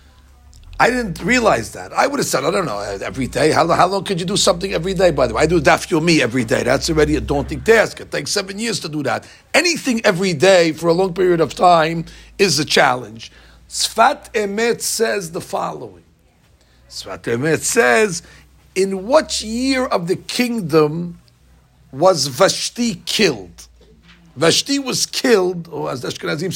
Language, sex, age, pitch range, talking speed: English, male, 50-69, 150-225 Hz, 180 wpm